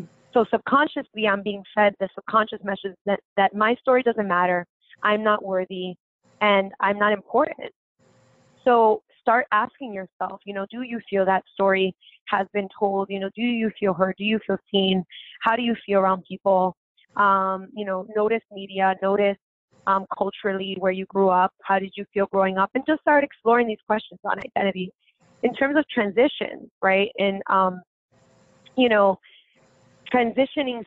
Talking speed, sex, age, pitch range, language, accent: 170 wpm, female, 20-39, 195-225 Hz, English, American